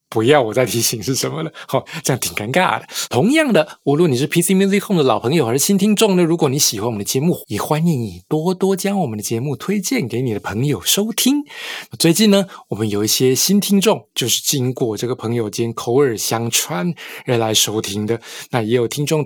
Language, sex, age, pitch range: Chinese, male, 20-39, 115-160 Hz